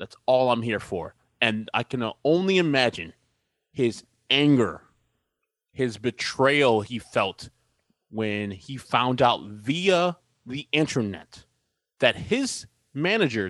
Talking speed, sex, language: 115 wpm, male, English